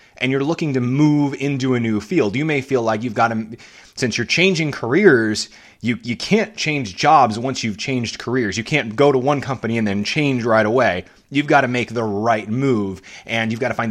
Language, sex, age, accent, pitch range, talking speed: English, male, 30-49, American, 110-150 Hz, 225 wpm